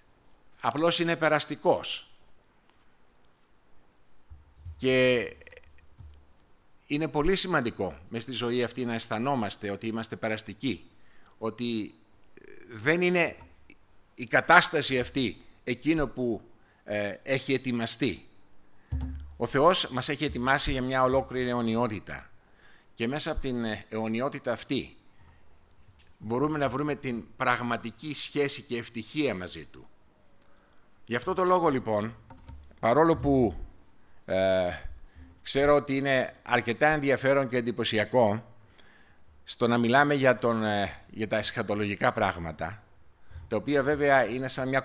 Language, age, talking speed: Greek, 50-69, 105 wpm